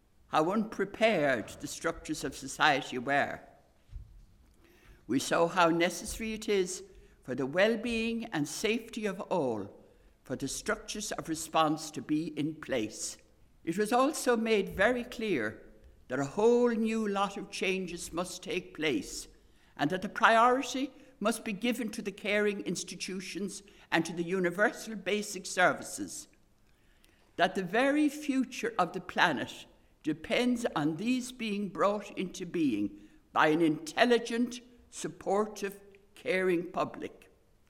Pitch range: 155-230 Hz